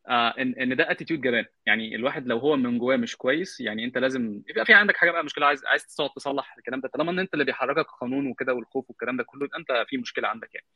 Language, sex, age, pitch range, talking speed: Arabic, male, 20-39, 120-150 Hz, 245 wpm